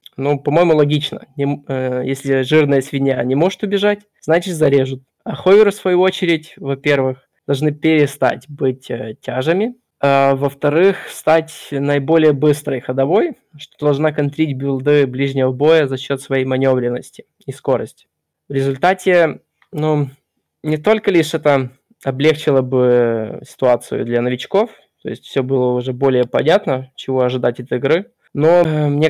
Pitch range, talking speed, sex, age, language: 135-155 Hz, 130 wpm, male, 20-39, Russian